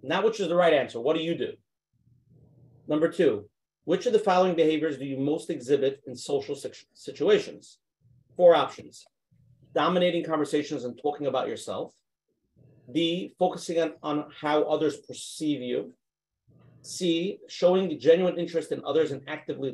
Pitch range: 145-205 Hz